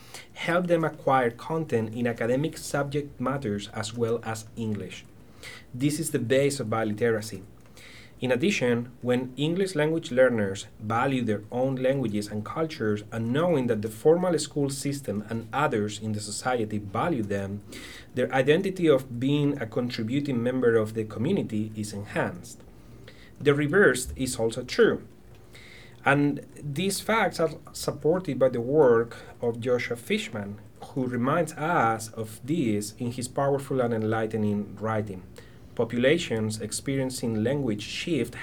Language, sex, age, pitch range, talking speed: English, male, 30-49, 110-140 Hz, 135 wpm